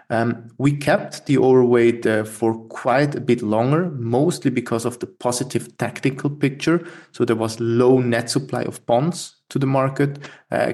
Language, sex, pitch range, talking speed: English, male, 115-125 Hz, 170 wpm